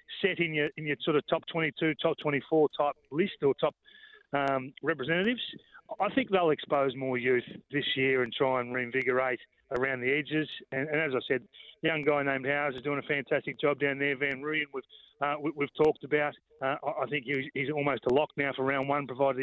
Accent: Australian